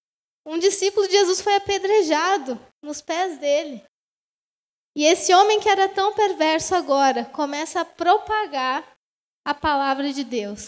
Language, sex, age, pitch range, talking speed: Portuguese, female, 20-39, 290-375 Hz, 135 wpm